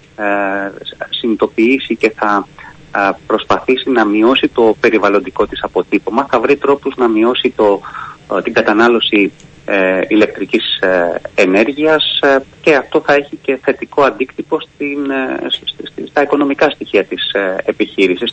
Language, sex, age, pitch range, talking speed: Greek, male, 30-49, 110-145 Hz, 115 wpm